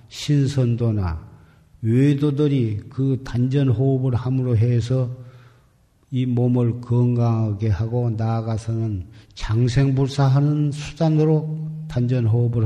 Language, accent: Korean, native